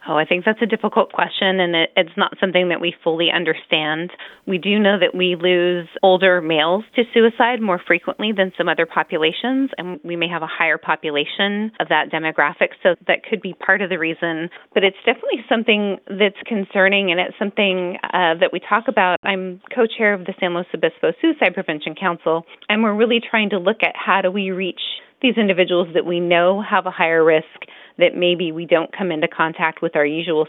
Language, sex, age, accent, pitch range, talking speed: English, female, 30-49, American, 165-215 Hz, 205 wpm